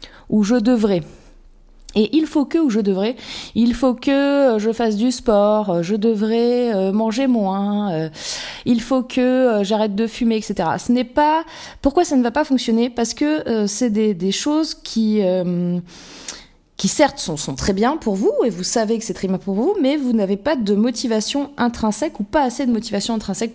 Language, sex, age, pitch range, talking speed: French, female, 30-49, 190-245 Hz, 190 wpm